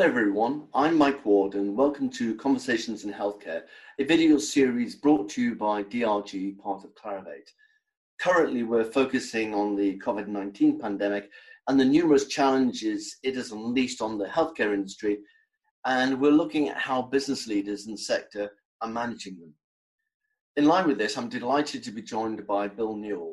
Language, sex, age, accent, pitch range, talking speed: English, male, 40-59, British, 105-150 Hz, 165 wpm